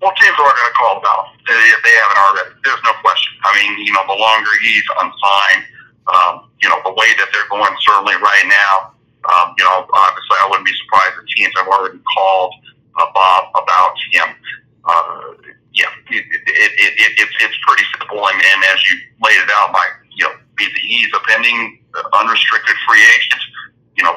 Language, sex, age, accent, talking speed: English, male, 50-69, American, 205 wpm